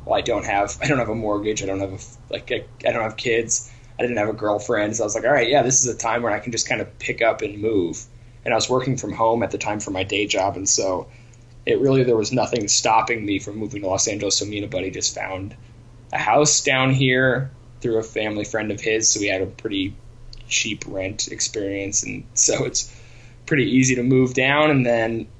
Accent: American